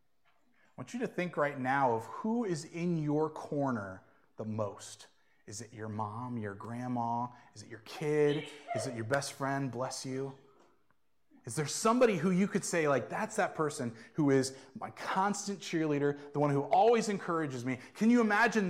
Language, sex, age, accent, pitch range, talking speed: English, male, 30-49, American, 130-200 Hz, 185 wpm